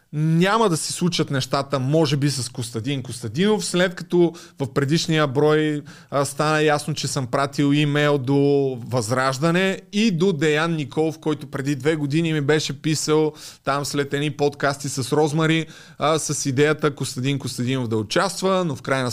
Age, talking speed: 20-39, 160 wpm